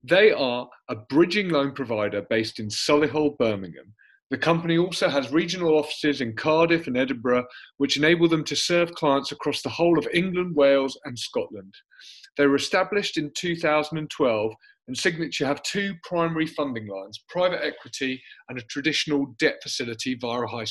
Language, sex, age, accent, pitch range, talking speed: English, male, 30-49, British, 135-175 Hz, 160 wpm